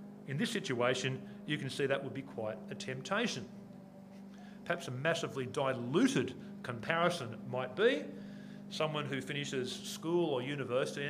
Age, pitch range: 40-59, 125-185 Hz